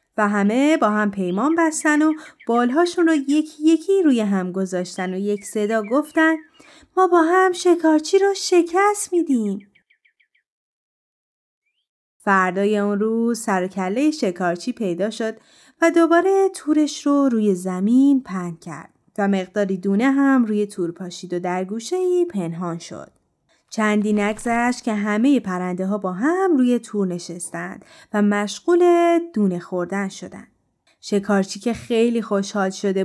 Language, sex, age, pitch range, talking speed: Persian, female, 30-49, 190-305 Hz, 135 wpm